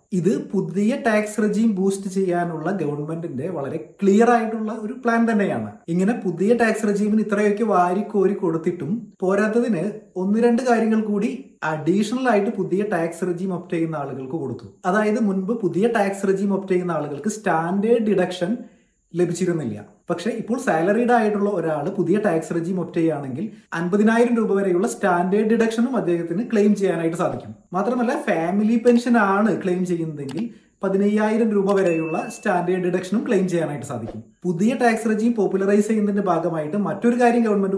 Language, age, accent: Malayalam, 30-49, native